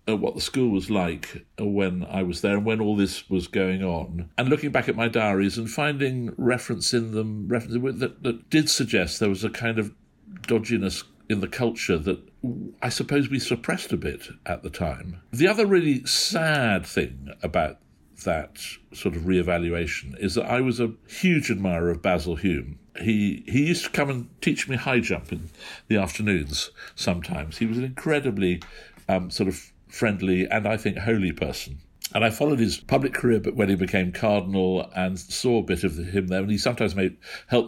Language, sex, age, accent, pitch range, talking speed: English, male, 60-79, British, 90-115 Hz, 195 wpm